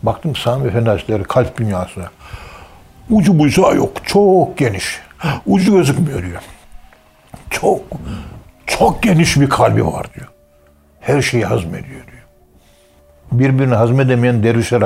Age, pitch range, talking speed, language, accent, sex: 60-79, 85-120 Hz, 110 wpm, Turkish, native, male